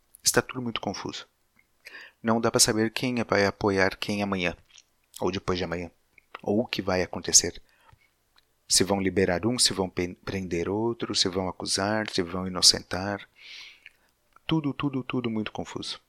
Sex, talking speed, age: male, 155 wpm, 40-59